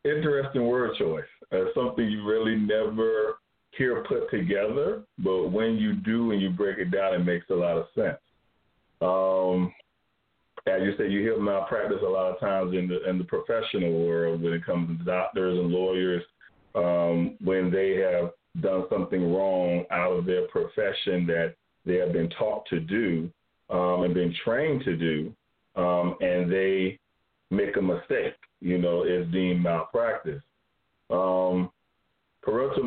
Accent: American